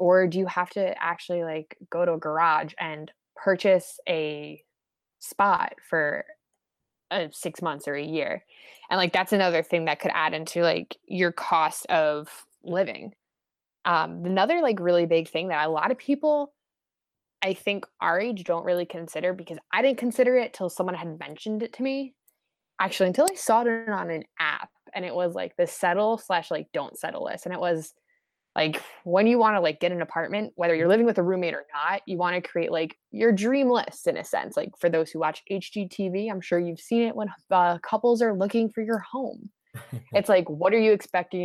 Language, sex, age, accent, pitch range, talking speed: English, female, 20-39, American, 170-220 Hz, 205 wpm